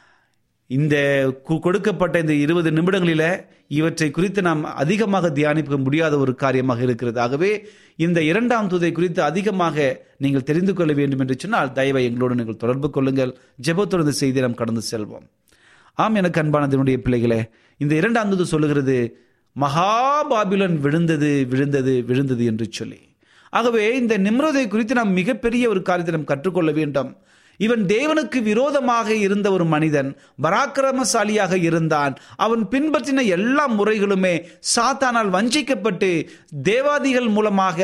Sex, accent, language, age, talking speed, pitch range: male, native, Tamil, 30-49, 115 wpm, 135-210 Hz